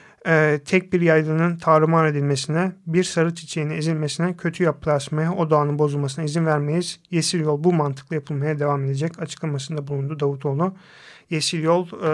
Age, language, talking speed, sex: 40-59, Turkish, 140 wpm, male